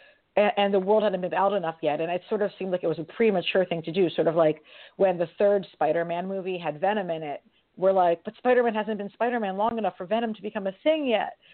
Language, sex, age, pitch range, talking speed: English, female, 40-59, 175-220 Hz, 255 wpm